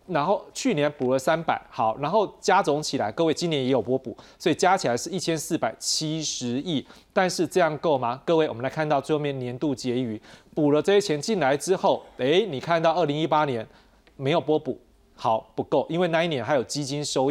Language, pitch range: Chinese, 135-170 Hz